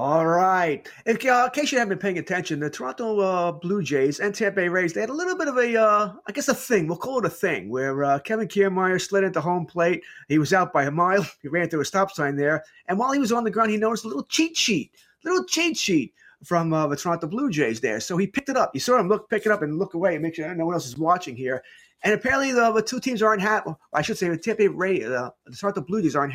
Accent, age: American, 30-49